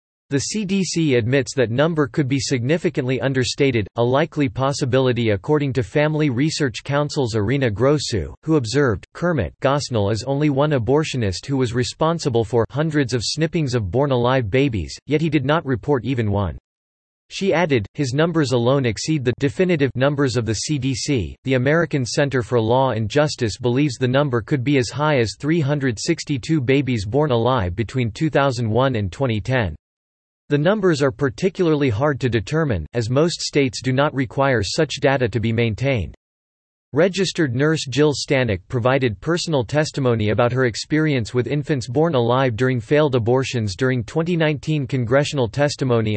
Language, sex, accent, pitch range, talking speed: English, male, American, 120-150 Hz, 155 wpm